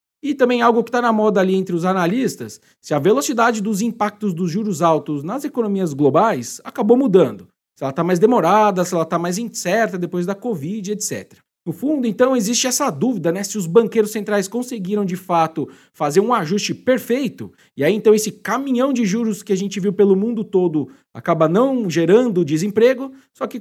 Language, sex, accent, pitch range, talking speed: Portuguese, male, Brazilian, 190-240 Hz, 195 wpm